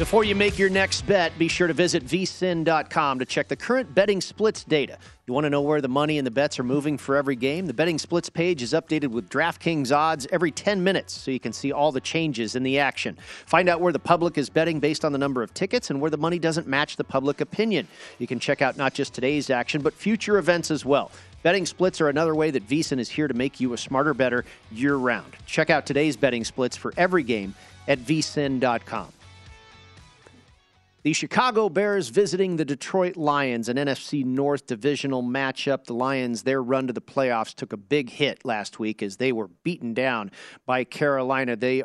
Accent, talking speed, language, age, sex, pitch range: American, 215 wpm, English, 40-59, male, 130-165 Hz